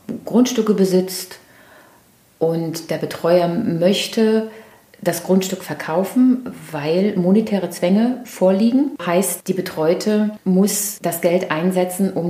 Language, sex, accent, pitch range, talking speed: German, female, German, 165-215 Hz, 100 wpm